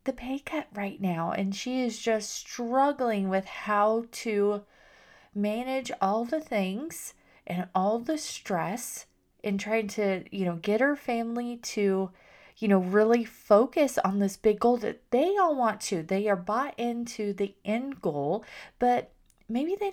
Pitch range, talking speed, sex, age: 195-260 Hz, 160 wpm, female, 30-49